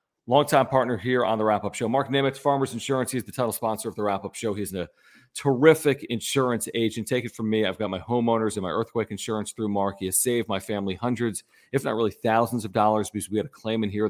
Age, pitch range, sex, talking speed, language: 40-59, 100-130 Hz, male, 245 wpm, English